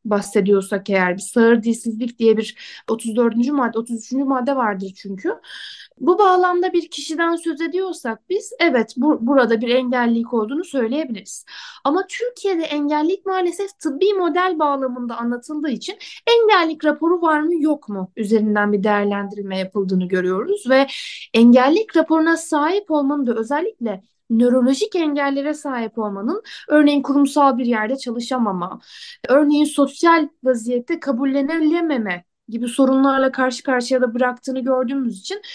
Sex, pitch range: female, 225-315 Hz